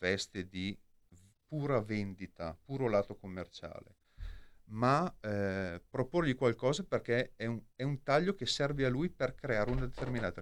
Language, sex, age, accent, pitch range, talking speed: Italian, male, 40-59, native, 95-130 Hz, 145 wpm